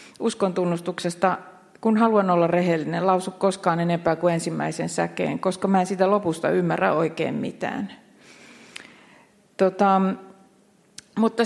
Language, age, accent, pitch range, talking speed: Finnish, 40-59, native, 175-215 Hz, 115 wpm